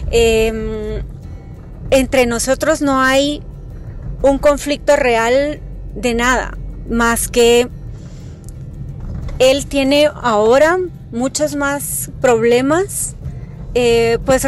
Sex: female